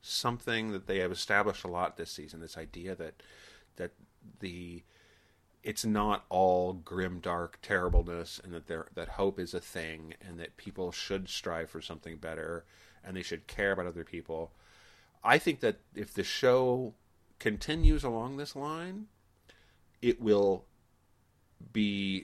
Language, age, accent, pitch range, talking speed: English, 40-59, American, 90-105 Hz, 150 wpm